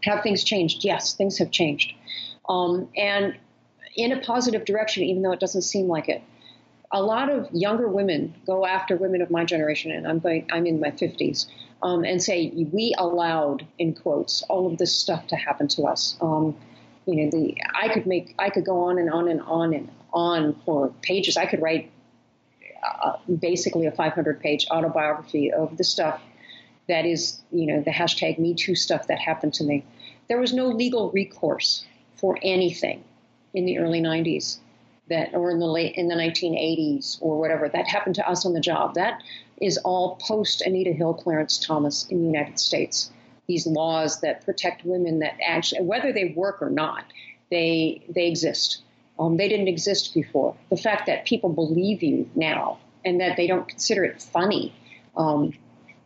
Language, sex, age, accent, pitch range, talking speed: English, female, 40-59, American, 160-190 Hz, 180 wpm